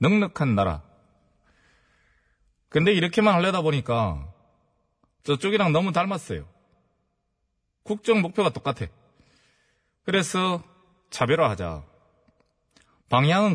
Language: Korean